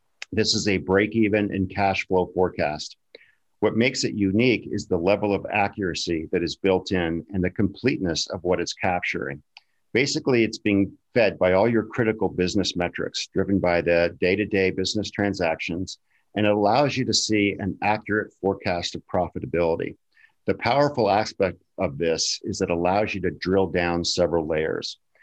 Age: 50-69